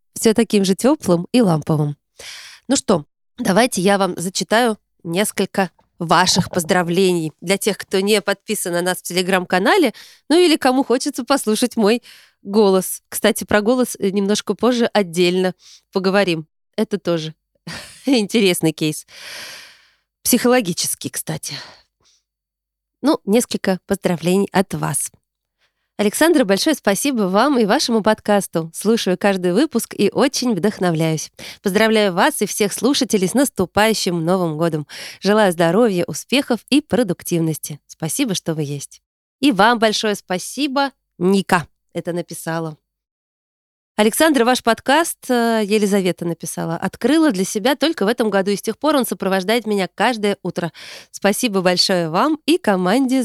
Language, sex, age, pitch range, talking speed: Russian, female, 20-39, 180-235 Hz, 125 wpm